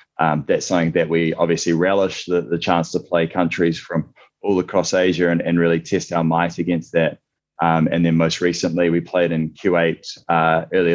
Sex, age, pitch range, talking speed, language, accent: male, 20-39, 85-90 Hz, 190 wpm, English, Australian